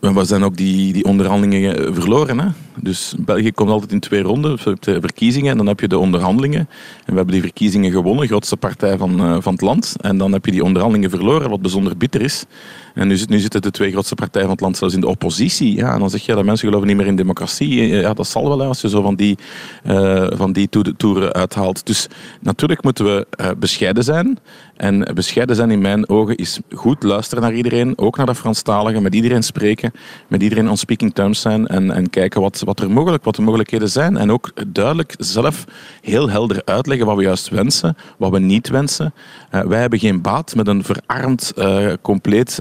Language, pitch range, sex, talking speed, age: Dutch, 95-115 Hz, male, 220 wpm, 40-59